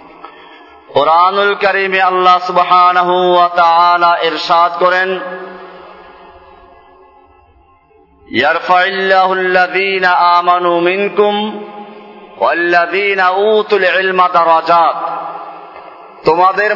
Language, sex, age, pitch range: Bengali, male, 40-59, 180-205 Hz